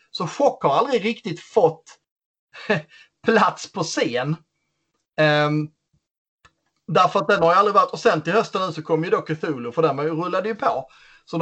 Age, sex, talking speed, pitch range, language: 30-49, male, 180 wpm, 140-165 Hz, Swedish